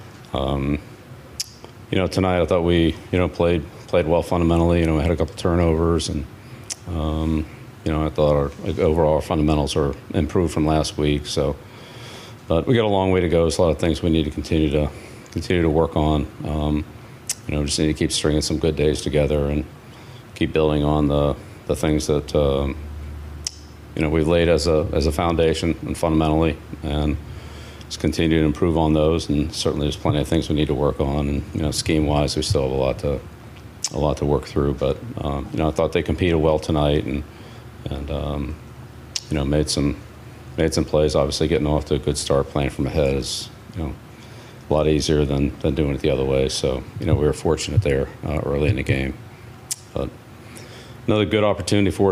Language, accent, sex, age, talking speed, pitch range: English, American, male, 40-59, 215 wpm, 75-85 Hz